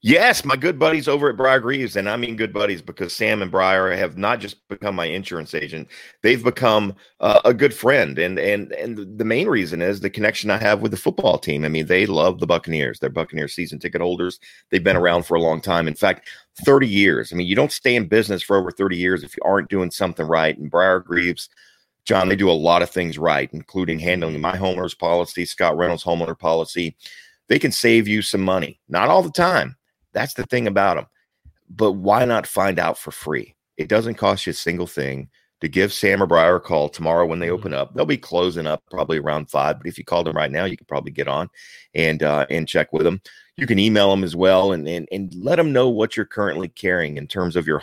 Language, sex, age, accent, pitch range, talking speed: English, male, 40-59, American, 85-100 Hz, 240 wpm